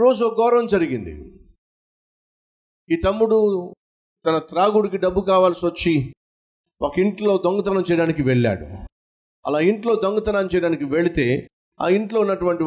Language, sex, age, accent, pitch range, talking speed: Telugu, male, 50-69, native, 140-190 Hz, 105 wpm